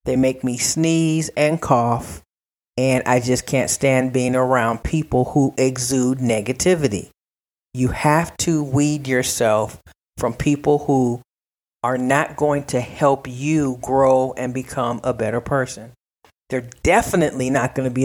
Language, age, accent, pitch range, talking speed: English, 40-59, American, 125-150 Hz, 145 wpm